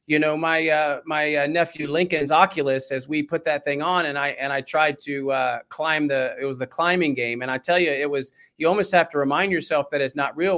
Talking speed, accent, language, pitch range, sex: 255 wpm, American, English, 145-175 Hz, male